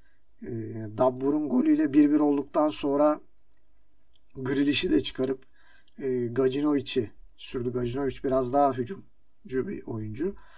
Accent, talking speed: native, 110 wpm